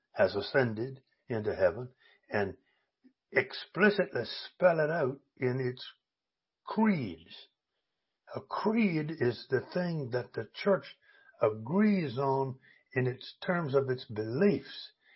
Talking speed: 110 wpm